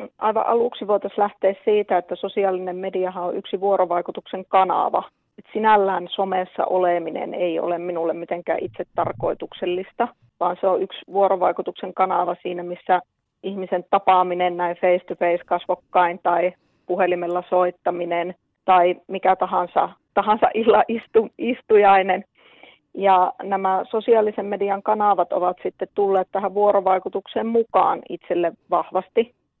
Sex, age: female, 30-49